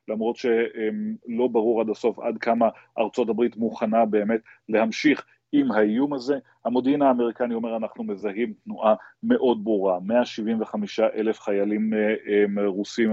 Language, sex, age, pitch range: Hebrew, male, 30-49, 105-120 Hz